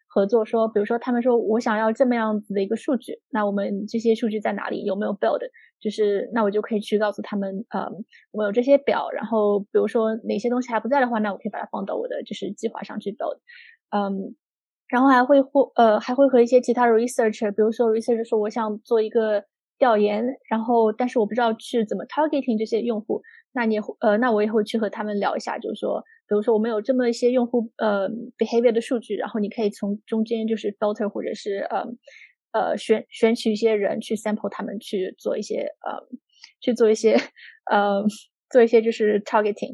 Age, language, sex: 20-39, Chinese, female